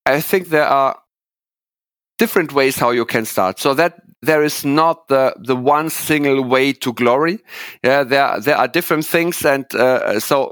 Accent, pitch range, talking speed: German, 125-155 Hz, 175 wpm